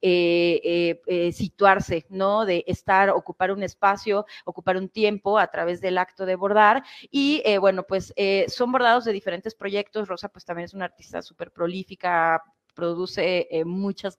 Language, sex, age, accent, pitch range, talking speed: Spanish, female, 30-49, Mexican, 175-200 Hz, 165 wpm